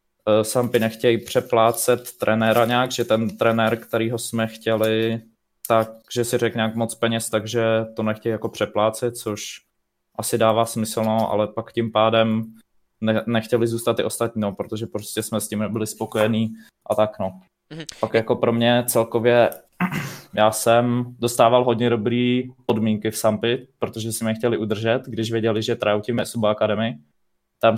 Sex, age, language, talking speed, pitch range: male, 20-39, Czech, 150 wpm, 110-115 Hz